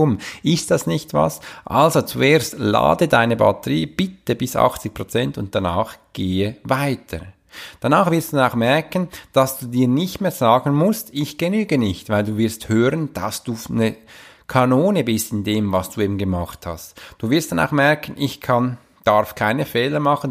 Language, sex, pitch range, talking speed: German, male, 110-145 Hz, 175 wpm